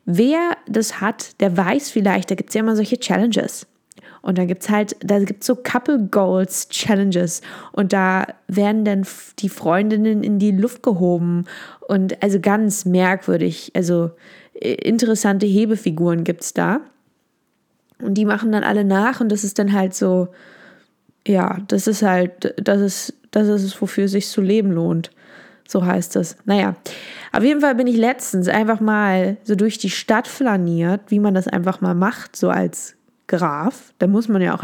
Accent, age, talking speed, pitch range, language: German, 20-39, 175 wpm, 185-225 Hz, German